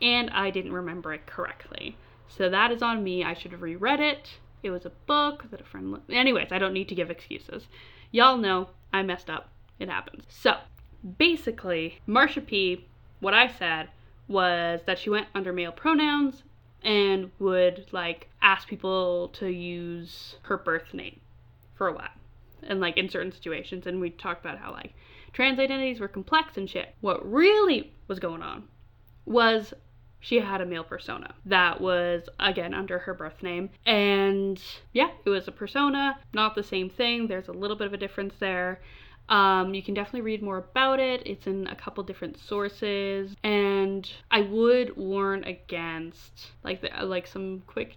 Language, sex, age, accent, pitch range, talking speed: English, female, 10-29, American, 180-225 Hz, 175 wpm